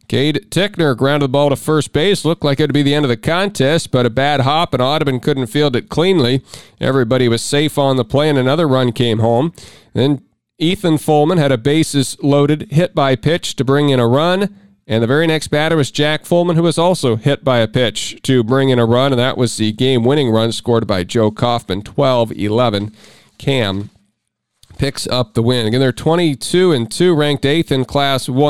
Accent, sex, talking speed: American, male, 215 wpm